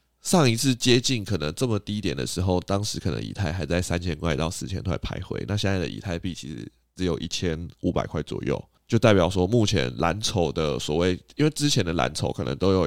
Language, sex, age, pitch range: Chinese, male, 20-39, 85-105 Hz